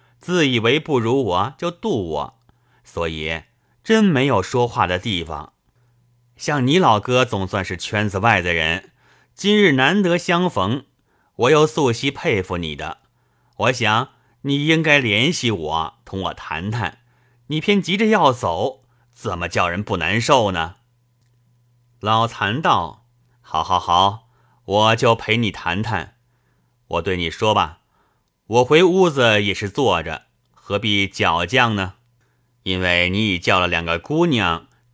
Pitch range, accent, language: 95-125 Hz, native, Chinese